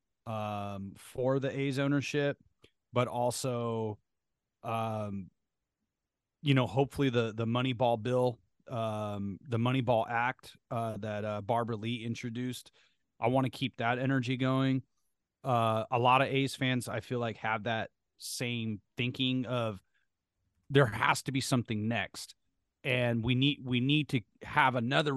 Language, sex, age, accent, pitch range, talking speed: English, male, 30-49, American, 110-135 Hz, 150 wpm